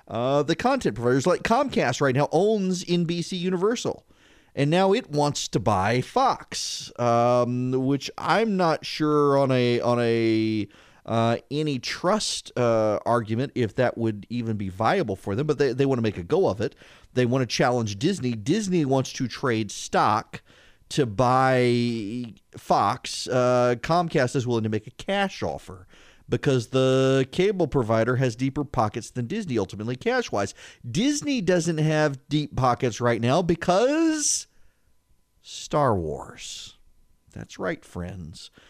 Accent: American